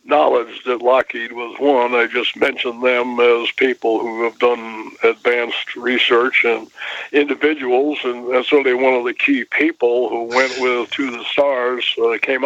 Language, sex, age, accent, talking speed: English, male, 60-79, American, 165 wpm